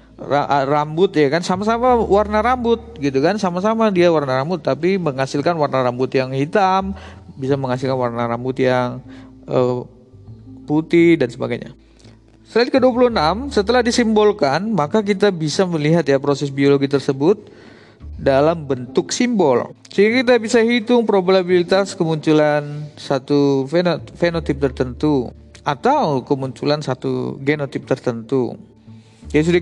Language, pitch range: Indonesian, 135-180 Hz